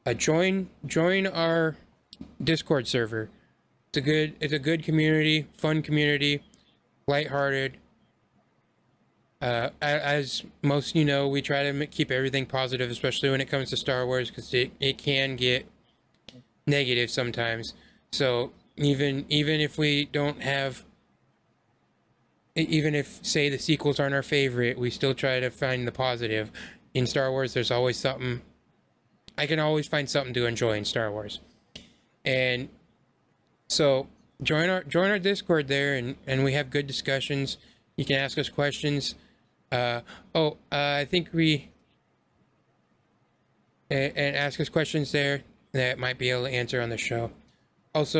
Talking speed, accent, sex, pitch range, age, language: 150 wpm, American, male, 125-150 Hz, 20-39, English